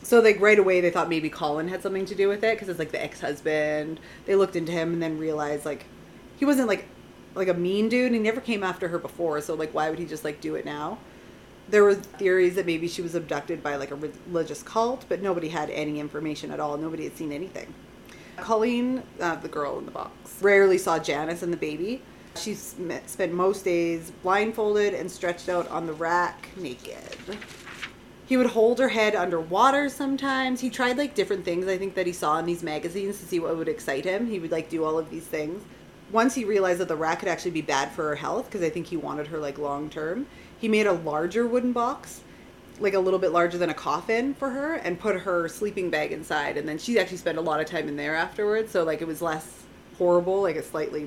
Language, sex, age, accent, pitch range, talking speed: English, female, 30-49, American, 160-205 Hz, 235 wpm